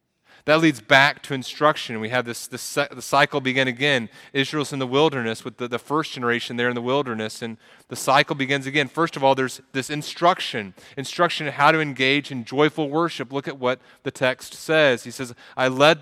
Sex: male